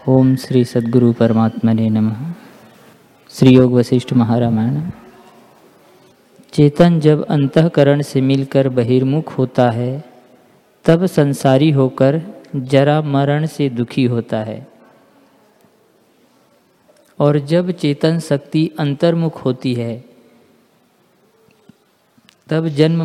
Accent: native